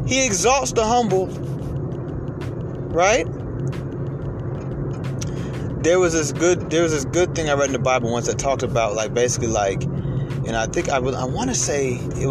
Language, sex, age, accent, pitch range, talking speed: English, male, 30-49, American, 125-150 Hz, 175 wpm